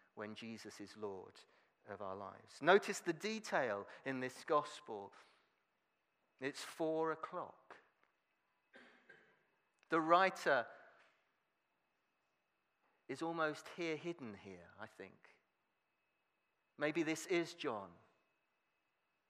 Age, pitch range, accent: 40-59, 120-170 Hz, British